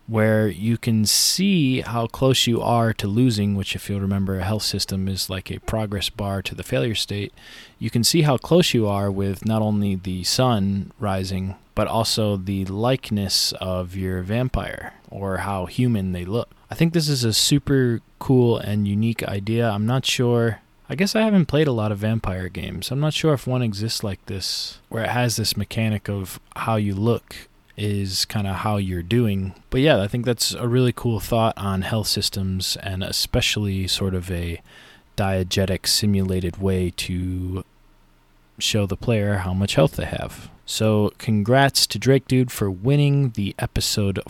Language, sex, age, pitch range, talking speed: English, male, 20-39, 95-125 Hz, 185 wpm